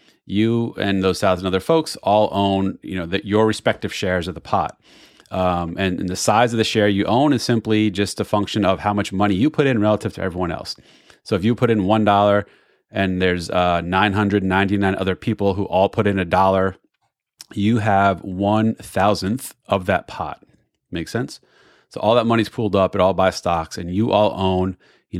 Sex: male